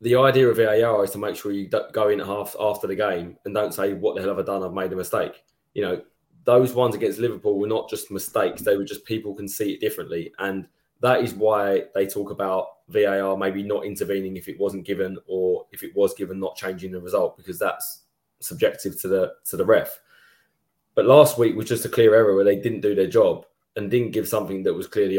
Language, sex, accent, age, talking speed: English, male, British, 20-39, 235 wpm